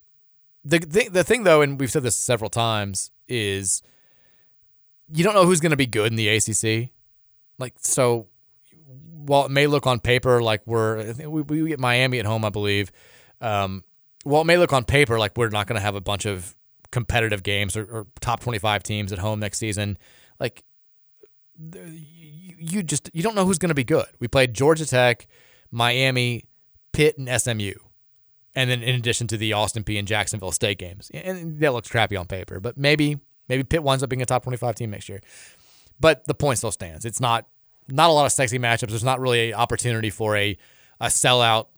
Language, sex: English, male